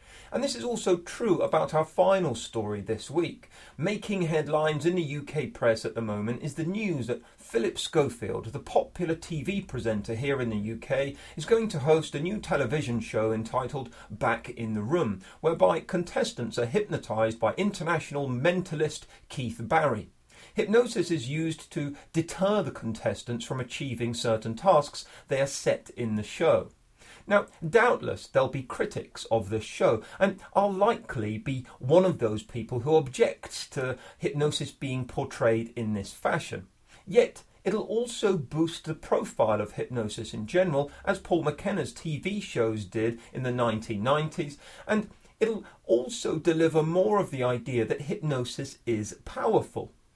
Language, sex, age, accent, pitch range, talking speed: English, male, 40-59, British, 115-175 Hz, 155 wpm